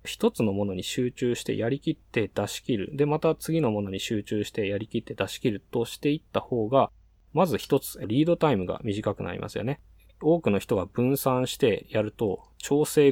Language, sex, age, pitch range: Japanese, male, 20-39, 100-140 Hz